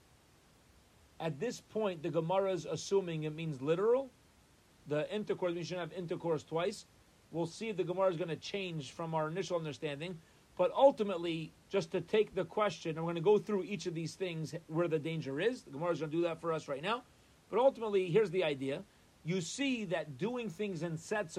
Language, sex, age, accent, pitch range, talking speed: English, male, 40-59, American, 145-190 Hz, 205 wpm